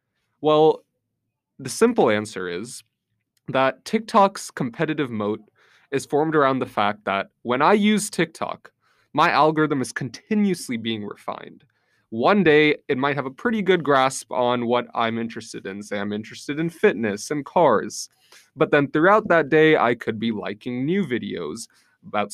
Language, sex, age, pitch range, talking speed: English, male, 20-39, 115-185 Hz, 155 wpm